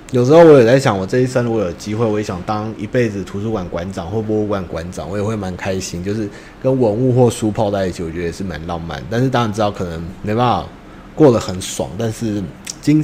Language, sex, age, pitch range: Chinese, male, 20-39, 90-115 Hz